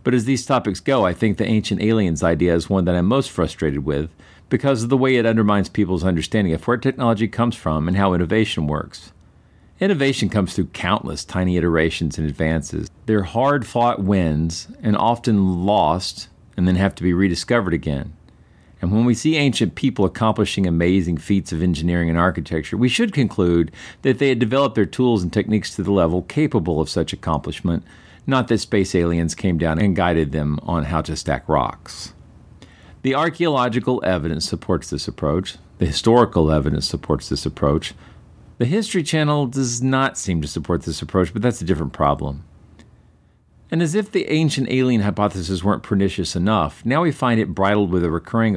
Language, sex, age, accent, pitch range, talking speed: English, male, 50-69, American, 85-115 Hz, 180 wpm